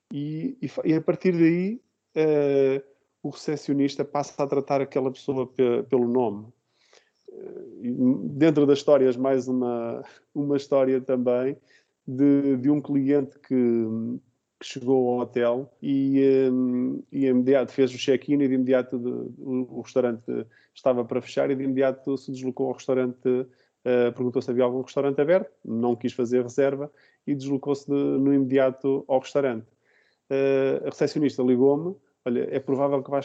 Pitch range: 125-140 Hz